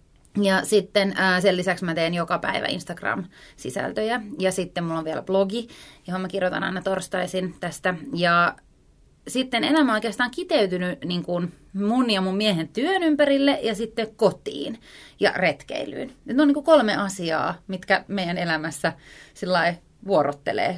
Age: 30-49